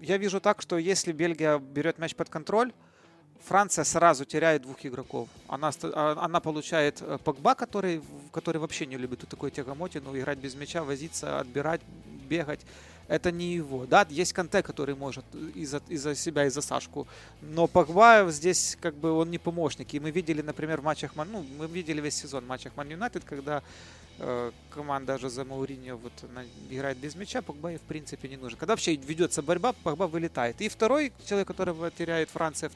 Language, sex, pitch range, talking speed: Russian, male, 135-170 Hz, 180 wpm